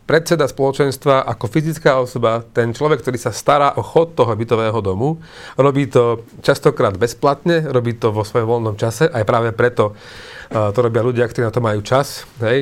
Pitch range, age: 115-145 Hz, 40-59